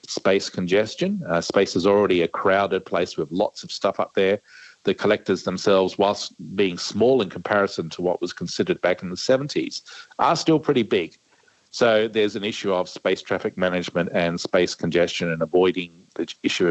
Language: English